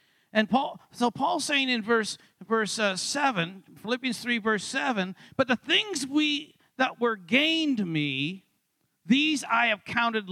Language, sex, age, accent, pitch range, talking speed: English, male, 50-69, American, 200-275 Hz, 150 wpm